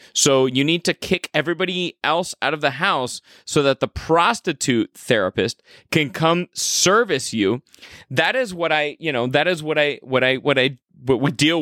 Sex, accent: male, American